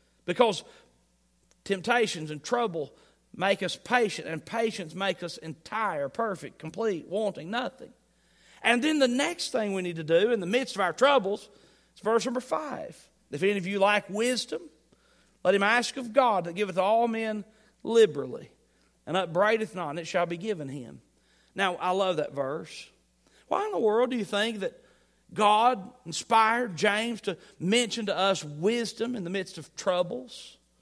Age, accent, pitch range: 40-59, American, 155-220 Hz